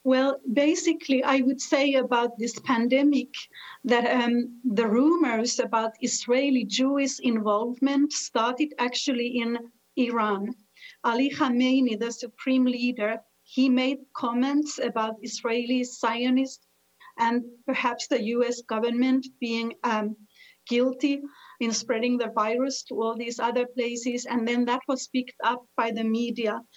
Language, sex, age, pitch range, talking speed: English, female, 40-59, 230-265 Hz, 125 wpm